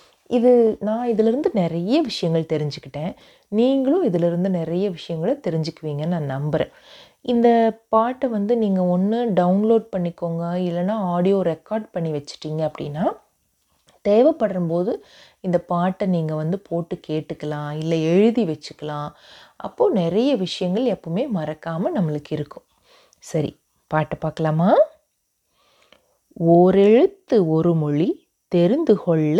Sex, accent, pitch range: female, native, 165-235 Hz